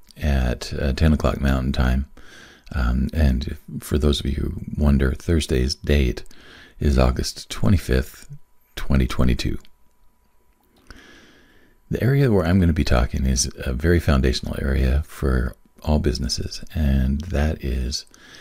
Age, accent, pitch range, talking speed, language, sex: 40-59, American, 65-75 Hz, 125 wpm, English, male